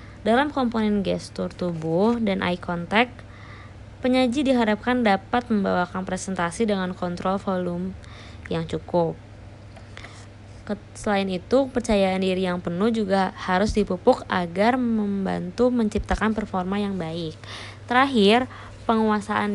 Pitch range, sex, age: 175-220 Hz, female, 20-39